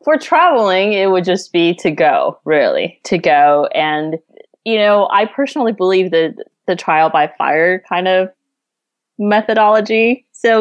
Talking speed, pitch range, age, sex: 145 wpm, 160-205 Hz, 20-39, female